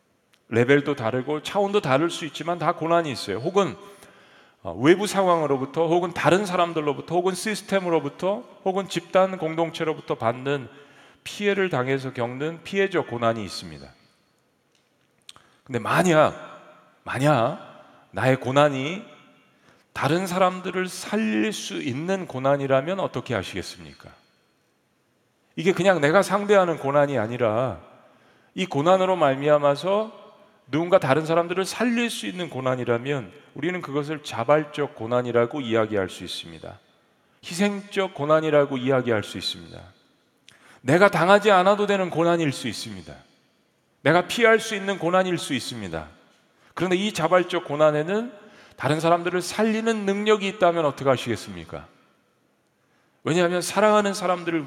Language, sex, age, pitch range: Korean, male, 40-59, 135-190 Hz